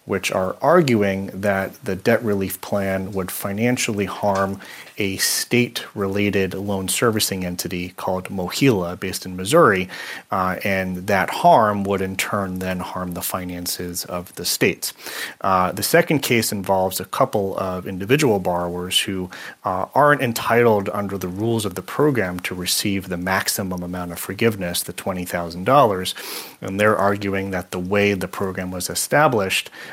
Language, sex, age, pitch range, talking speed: English, male, 30-49, 90-105 Hz, 150 wpm